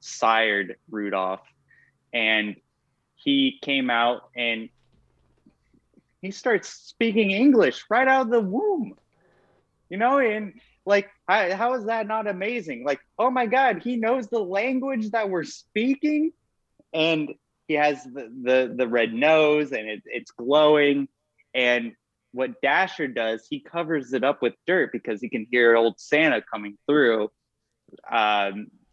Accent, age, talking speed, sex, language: American, 20-39, 135 wpm, male, English